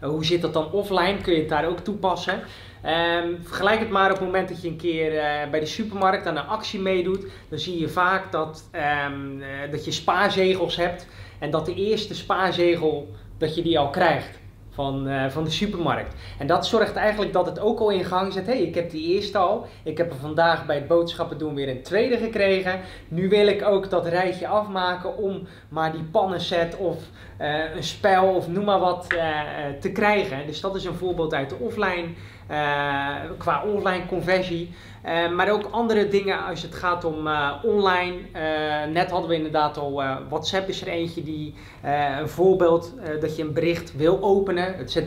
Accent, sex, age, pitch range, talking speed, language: Dutch, male, 20-39, 155-190 Hz, 205 wpm, Dutch